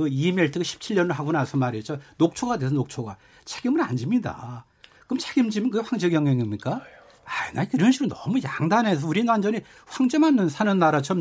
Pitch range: 140-190 Hz